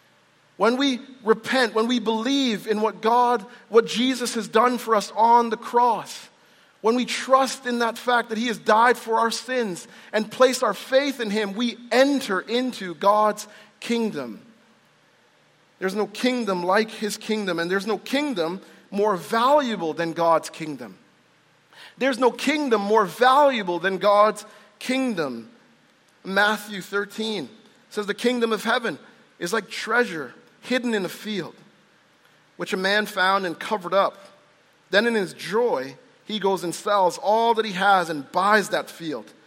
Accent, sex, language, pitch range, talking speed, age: American, male, English, 200-240 Hz, 155 wpm, 40-59